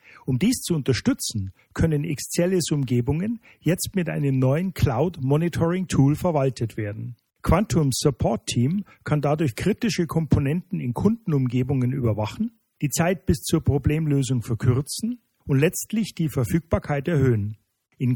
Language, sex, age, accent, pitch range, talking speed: German, male, 50-69, German, 125-165 Hz, 115 wpm